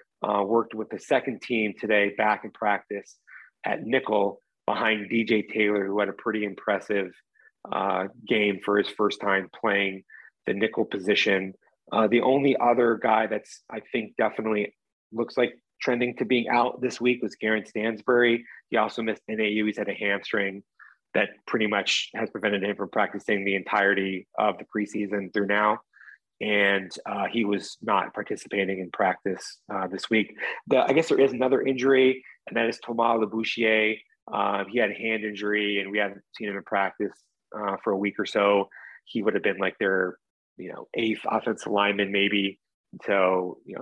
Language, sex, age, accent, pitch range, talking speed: English, male, 30-49, American, 100-110 Hz, 175 wpm